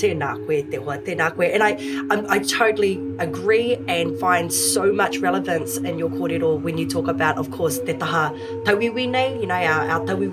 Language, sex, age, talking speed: English, female, 20-39, 190 wpm